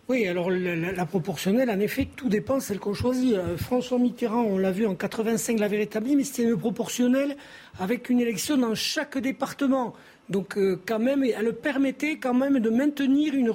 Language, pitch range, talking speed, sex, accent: French, 220-270 Hz, 180 wpm, male, French